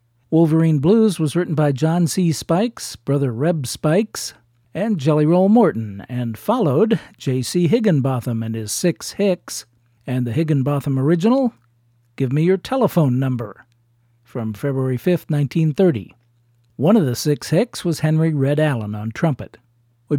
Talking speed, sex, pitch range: 145 wpm, male, 125-175 Hz